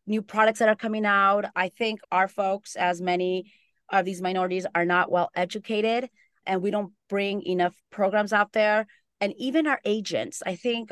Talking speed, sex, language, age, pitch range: 175 wpm, female, English, 30-49, 180-210 Hz